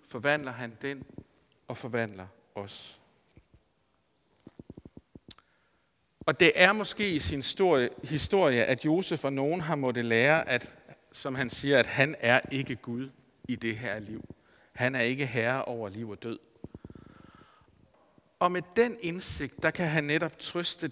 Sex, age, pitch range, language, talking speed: male, 50-69, 120-155 Hz, Danish, 145 wpm